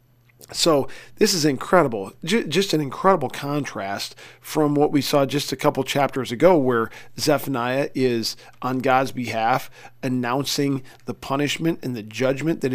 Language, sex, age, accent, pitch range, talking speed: English, male, 40-59, American, 125-145 Hz, 140 wpm